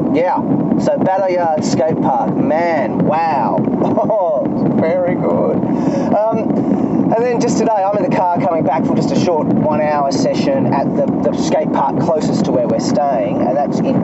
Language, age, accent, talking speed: English, 30-49, Australian, 175 wpm